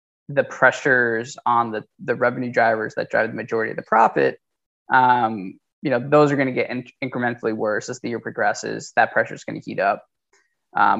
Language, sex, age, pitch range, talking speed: English, male, 20-39, 115-135 Hz, 190 wpm